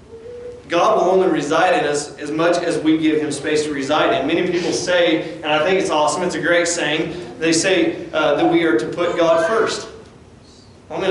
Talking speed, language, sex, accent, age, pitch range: 215 wpm, English, male, American, 40-59, 160-245 Hz